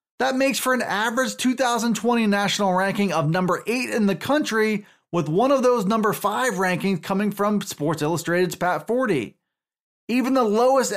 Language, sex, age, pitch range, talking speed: English, male, 20-39, 185-240 Hz, 165 wpm